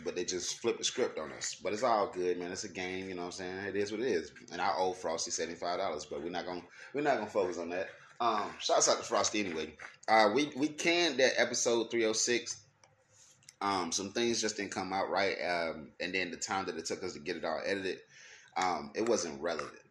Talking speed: 235 wpm